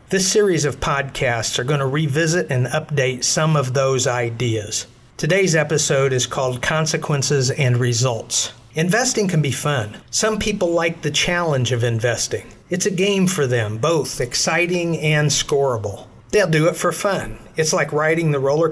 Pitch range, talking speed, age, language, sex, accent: 125-165 Hz, 160 wpm, 50-69, English, male, American